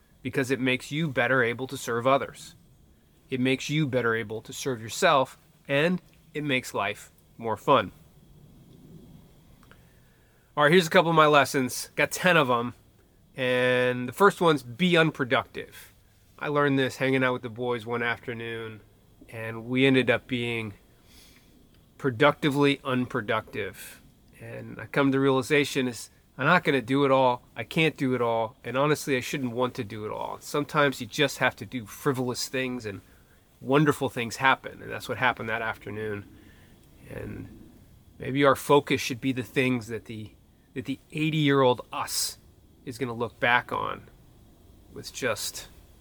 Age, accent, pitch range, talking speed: 30-49, American, 115-145 Hz, 165 wpm